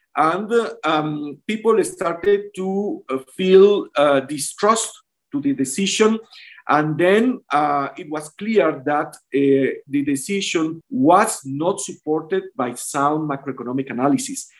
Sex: male